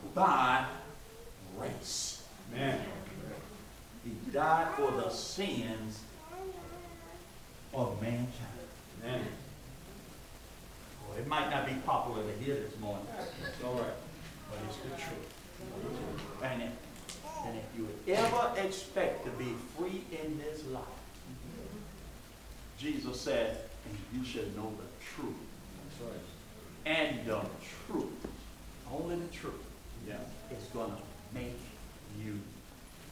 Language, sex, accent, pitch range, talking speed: English, male, American, 110-160 Hz, 110 wpm